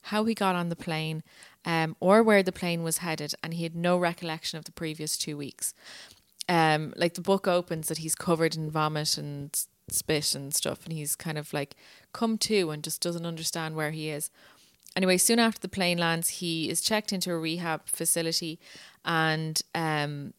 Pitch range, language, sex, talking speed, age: 160-180 Hz, English, female, 195 wpm, 20-39